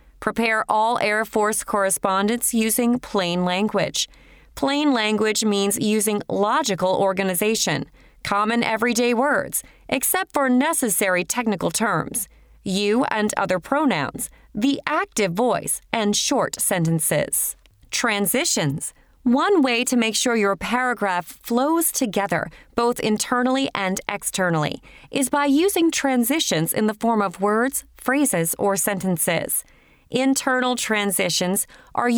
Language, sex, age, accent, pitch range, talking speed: English, female, 30-49, American, 195-255 Hz, 115 wpm